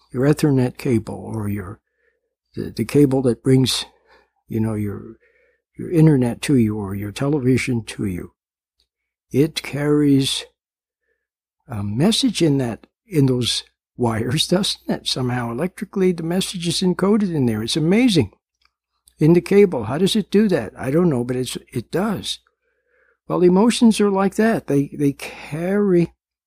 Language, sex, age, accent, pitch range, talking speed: English, male, 60-79, American, 130-190 Hz, 150 wpm